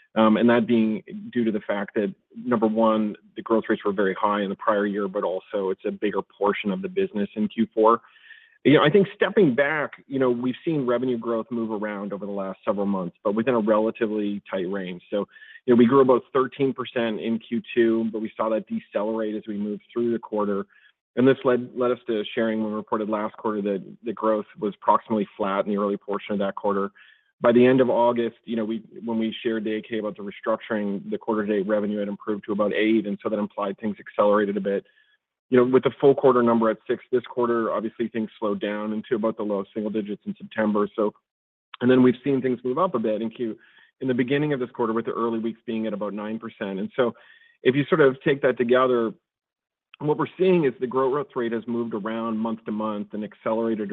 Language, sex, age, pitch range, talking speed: English, male, 40-59, 105-125 Hz, 235 wpm